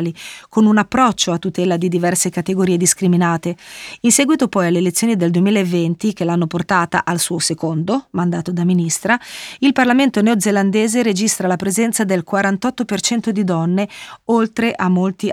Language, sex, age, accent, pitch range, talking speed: Italian, female, 30-49, native, 180-215 Hz, 150 wpm